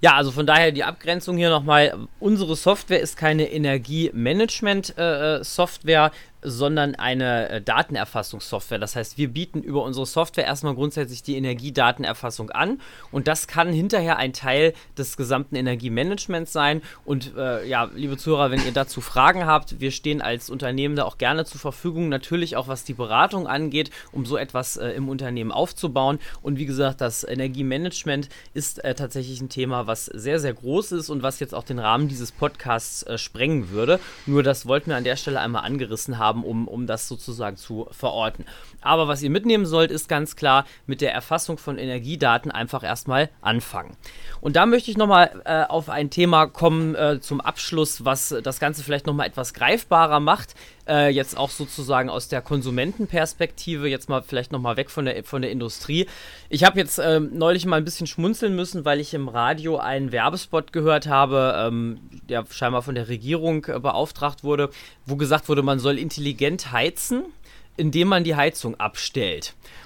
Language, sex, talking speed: German, male, 175 wpm